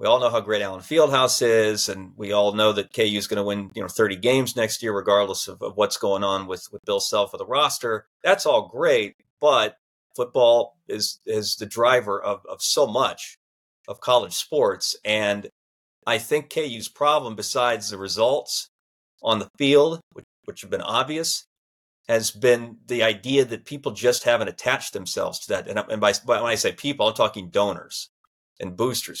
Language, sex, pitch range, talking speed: English, male, 100-135 Hz, 195 wpm